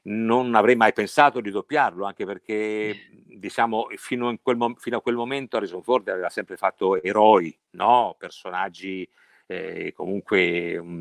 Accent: native